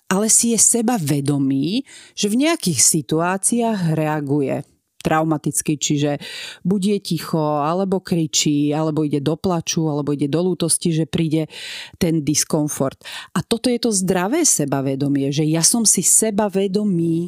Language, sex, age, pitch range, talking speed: Slovak, female, 40-59, 160-210 Hz, 140 wpm